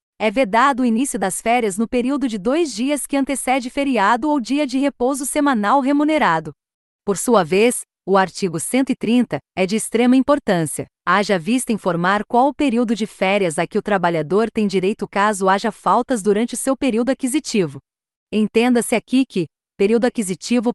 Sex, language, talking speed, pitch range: female, Portuguese, 165 wpm, 200-260 Hz